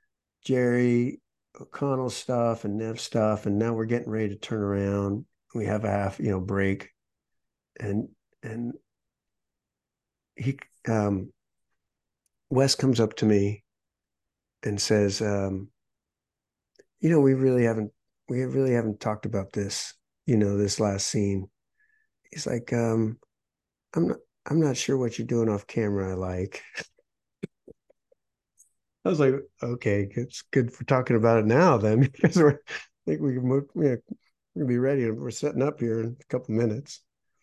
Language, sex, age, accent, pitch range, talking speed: English, male, 50-69, American, 110-145 Hz, 145 wpm